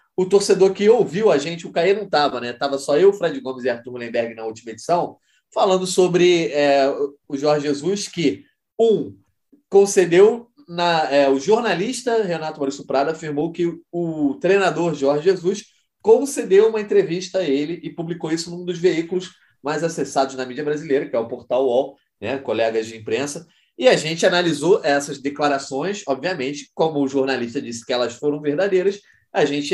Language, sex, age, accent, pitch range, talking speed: Portuguese, male, 20-39, Brazilian, 135-190 Hz, 175 wpm